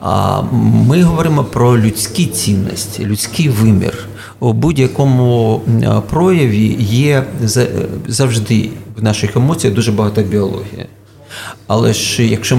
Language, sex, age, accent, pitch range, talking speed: Ukrainian, male, 40-59, native, 105-125 Hz, 100 wpm